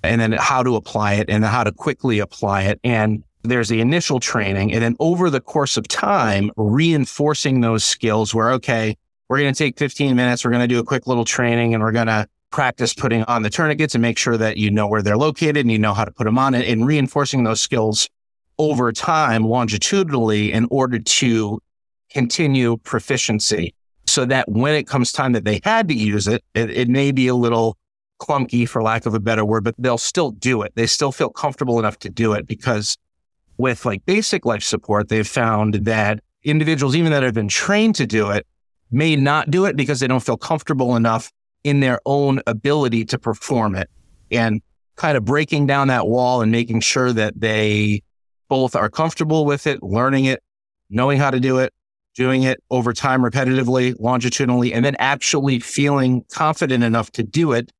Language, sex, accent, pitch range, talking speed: English, male, American, 110-140 Hz, 200 wpm